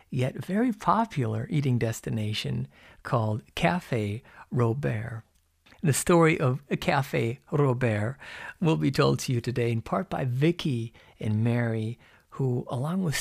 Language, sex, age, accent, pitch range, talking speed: English, male, 50-69, American, 115-155 Hz, 125 wpm